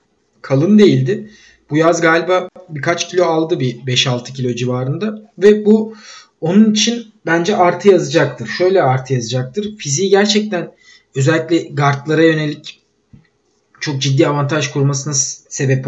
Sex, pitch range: male, 135-175 Hz